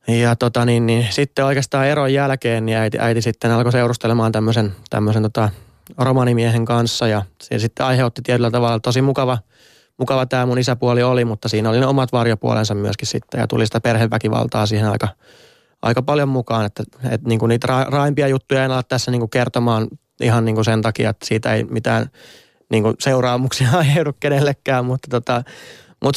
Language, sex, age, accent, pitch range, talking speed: Finnish, male, 20-39, native, 110-125 Hz, 175 wpm